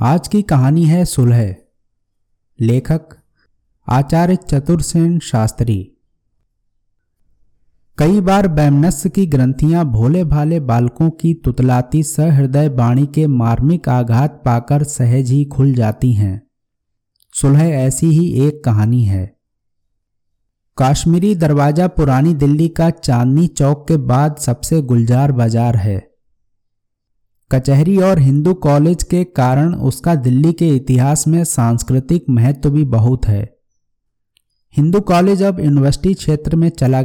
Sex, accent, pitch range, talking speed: male, native, 115-160 Hz, 120 wpm